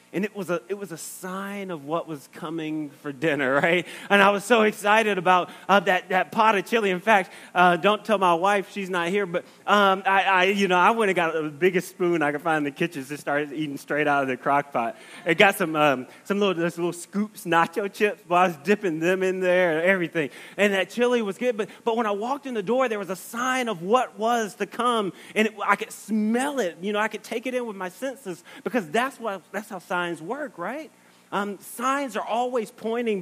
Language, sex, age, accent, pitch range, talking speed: English, male, 30-49, American, 165-210 Hz, 245 wpm